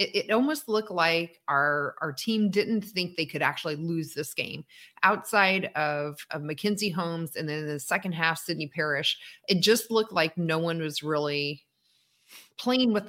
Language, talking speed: English, 175 wpm